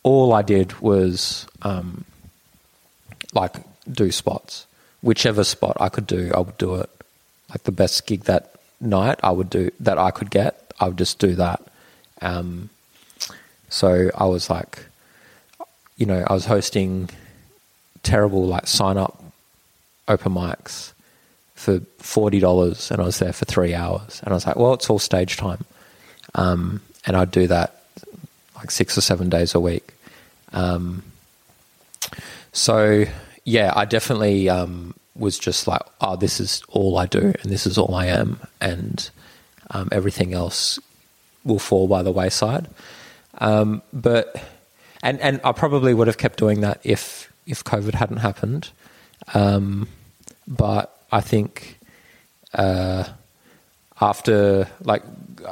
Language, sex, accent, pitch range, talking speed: English, male, Australian, 90-110 Hz, 145 wpm